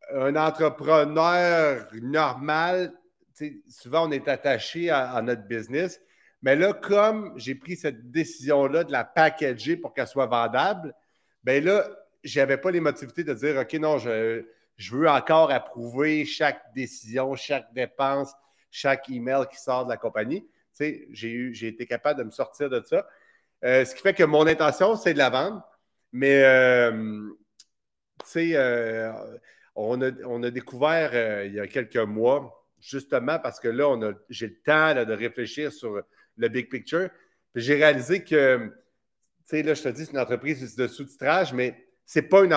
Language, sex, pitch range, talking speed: French, male, 120-155 Hz, 175 wpm